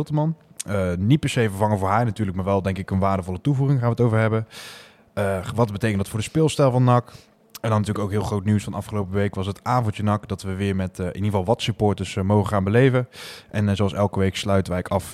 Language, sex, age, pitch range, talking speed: Dutch, male, 20-39, 95-115 Hz, 260 wpm